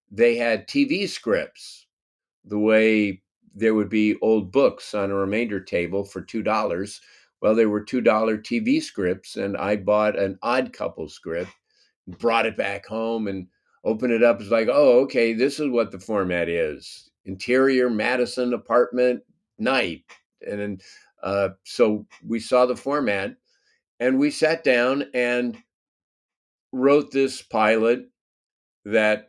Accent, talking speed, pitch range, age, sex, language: American, 145 wpm, 105-125 Hz, 50-69, male, English